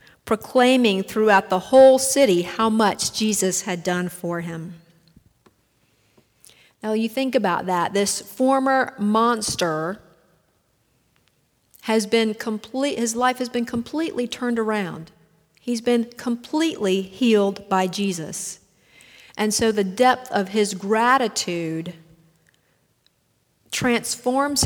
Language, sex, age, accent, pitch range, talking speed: English, female, 50-69, American, 180-225 Hz, 105 wpm